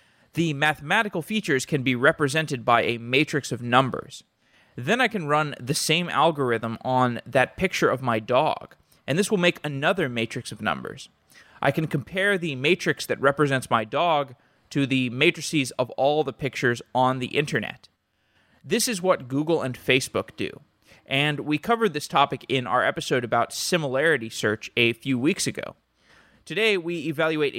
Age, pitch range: 20-39, 125-155 Hz